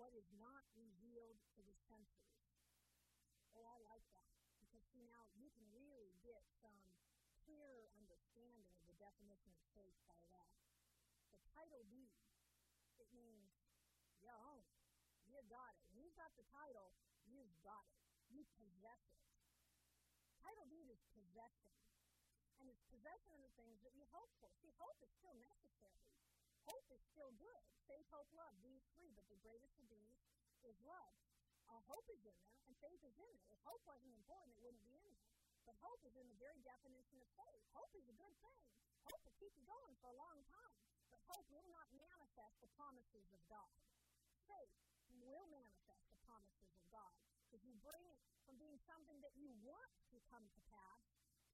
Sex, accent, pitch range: female, American, 205-280 Hz